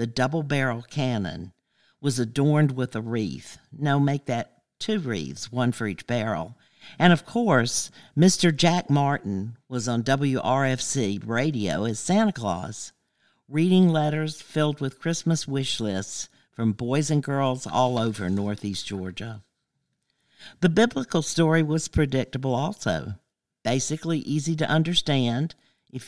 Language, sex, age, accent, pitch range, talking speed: English, male, 50-69, American, 115-150 Hz, 130 wpm